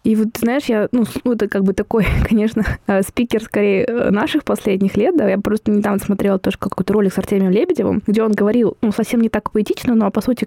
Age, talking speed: 20-39, 225 wpm